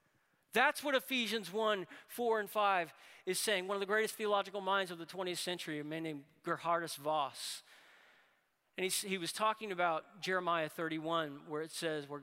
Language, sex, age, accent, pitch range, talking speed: English, male, 40-59, American, 140-175 Hz, 170 wpm